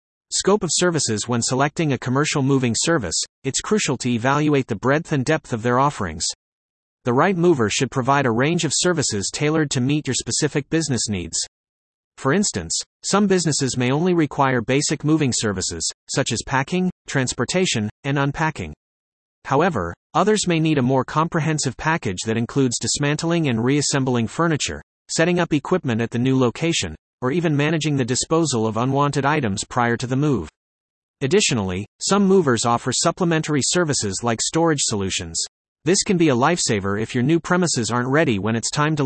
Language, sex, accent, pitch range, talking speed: English, male, American, 115-155 Hz, 165 wpm